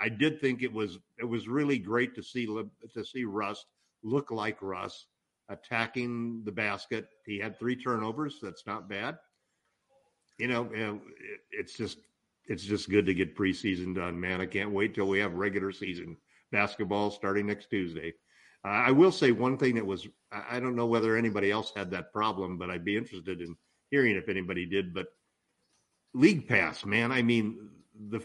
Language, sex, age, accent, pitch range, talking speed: English, male, 50-69, American, 100-130 Hz, 180 wpm